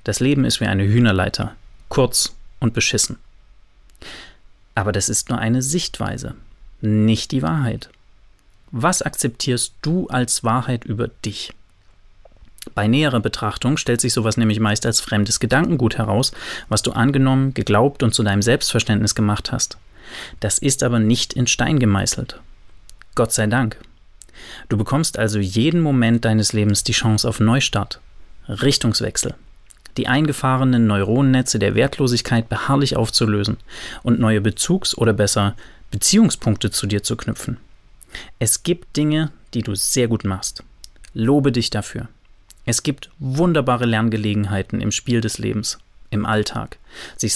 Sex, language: male, German